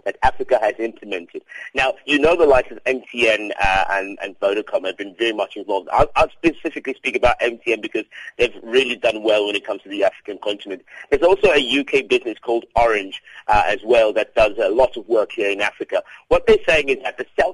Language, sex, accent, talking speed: English, male, British, 220 wpm